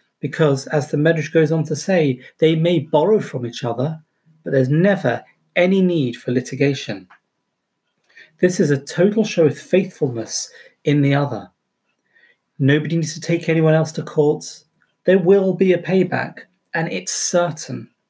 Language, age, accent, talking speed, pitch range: English, 30-49, British, 155 wpm, 135-180 Hz